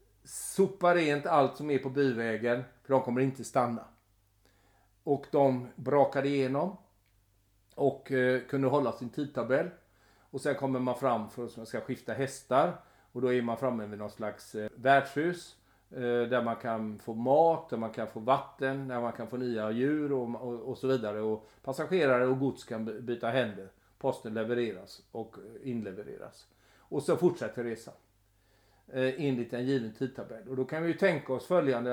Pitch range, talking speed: 115-145 Hz, 165 wpm